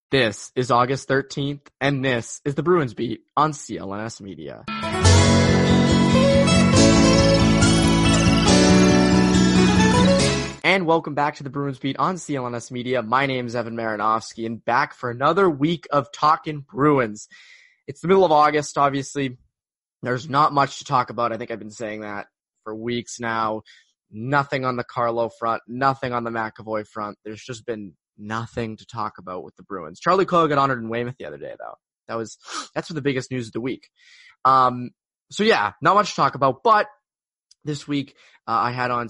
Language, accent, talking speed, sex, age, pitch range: English, American, 170 wpm, male, 20-39, 115-145 Hz